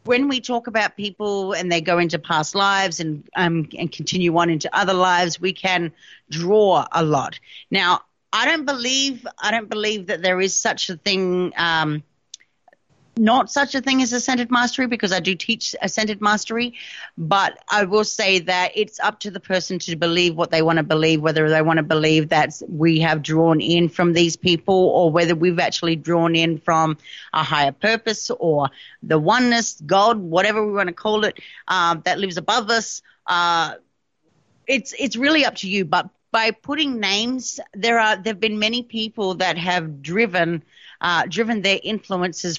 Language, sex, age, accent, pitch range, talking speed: English, female, 30-49, Australian, 170-215 Hz, 185 wpm